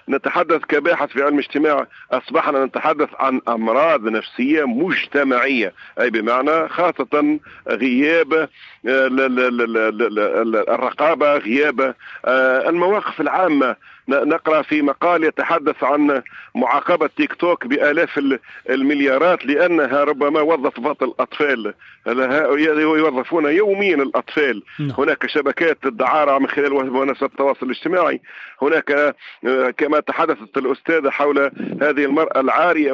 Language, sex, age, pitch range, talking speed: Arabic, male, 50-69, 135-165 Hz, 95 wpm